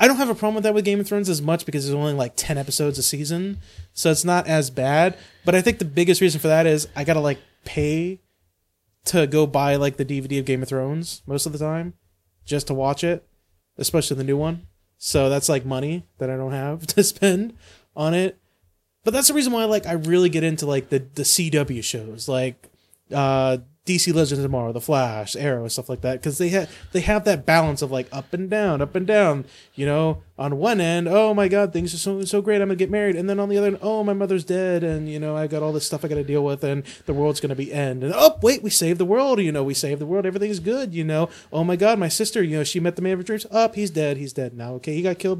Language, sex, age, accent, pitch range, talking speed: English, male, 20-39, American, 135-190 Hz, 270 wpm